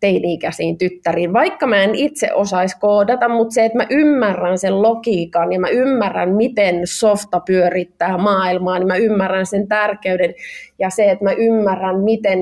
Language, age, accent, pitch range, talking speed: Finnish, 20-39, native, 180-225 Hz, 165 wpm